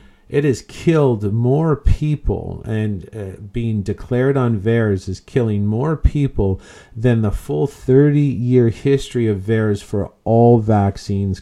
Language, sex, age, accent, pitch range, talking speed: English, male, 50-69, American, 100-125 Hz, 135 wpm